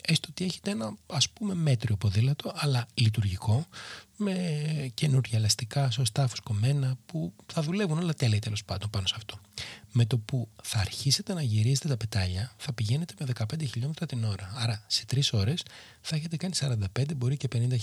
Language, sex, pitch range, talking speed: Greek, male, 110-135 Hz, 175 wpm